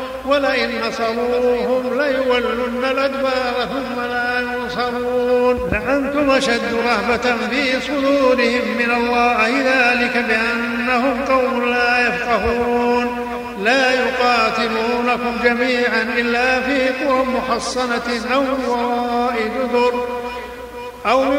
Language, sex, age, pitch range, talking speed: Arabic, male, 50-69, 240-255 Hz, 80 wpm